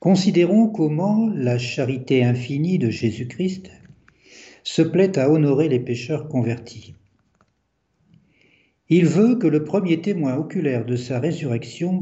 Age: 60-79